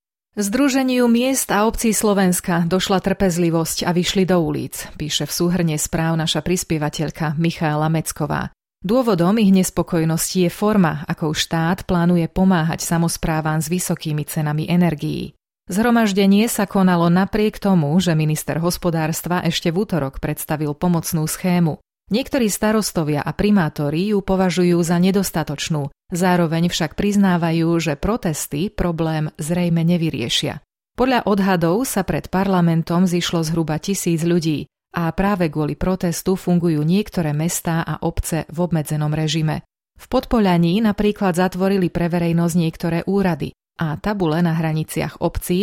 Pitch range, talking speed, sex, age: 160-190 Hz, 130 wpm, female, 30-49